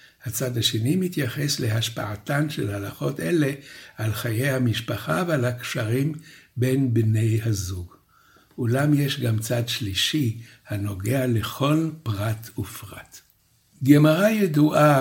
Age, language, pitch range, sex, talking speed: 60-79, Hebrew, 115-145 Hz, male, 105 wpm